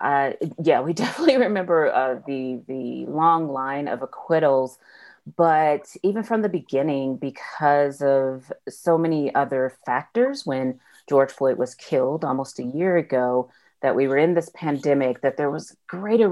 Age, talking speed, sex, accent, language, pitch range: 30-49, 155 wpm, female, American, English, 135-185 Hz